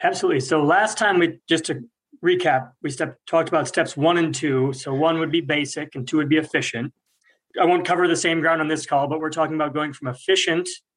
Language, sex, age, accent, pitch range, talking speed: English, male, 30-49, American, 135-180 Hz, 230 wpm